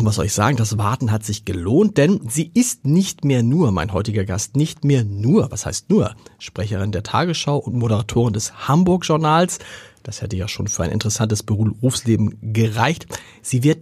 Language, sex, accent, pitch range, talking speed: German, male, German, 110-180 Hz, 180 wpm